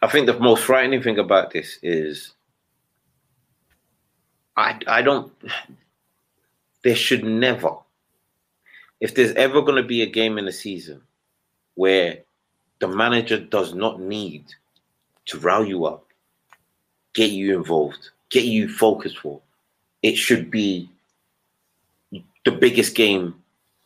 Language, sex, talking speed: English, male, 125 wpm